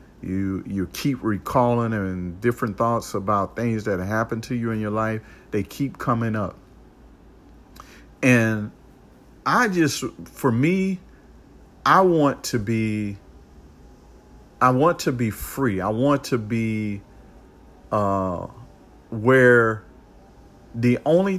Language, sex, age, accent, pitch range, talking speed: English, male, 50-69, American, 95-125 Hz, 120 wpm